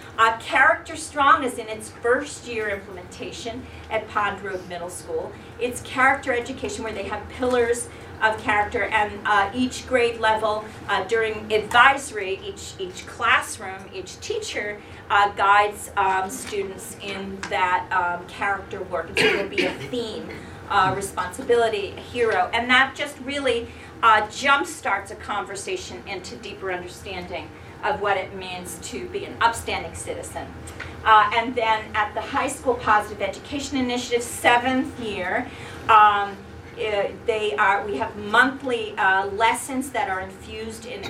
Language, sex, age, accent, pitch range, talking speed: English, female, 40-59, American, 200-255 Hz, 145 wpm